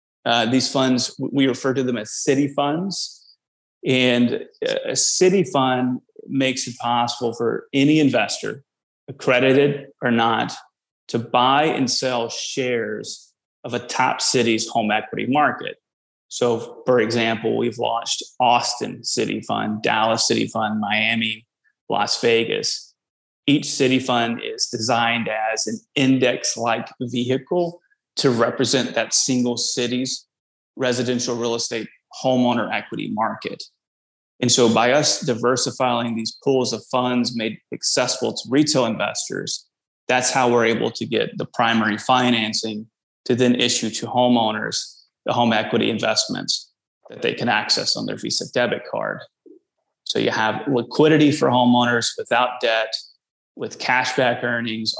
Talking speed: 135 wpm